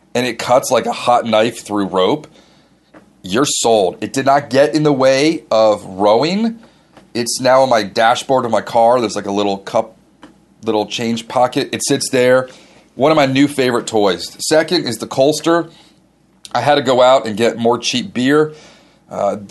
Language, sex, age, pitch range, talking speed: English, male, 30-49, 110-140 Hz, 185 wpm